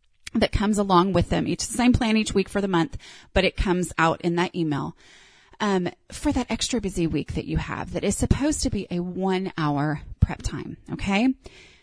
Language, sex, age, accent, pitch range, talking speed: English, female, 30-49, American, 175-245 Hz, 205 wpm